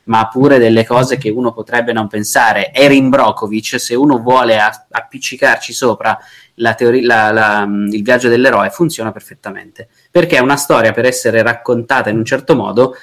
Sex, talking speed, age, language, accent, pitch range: male, 160 wpm, 20-39, Italian, native, 110-135 Hz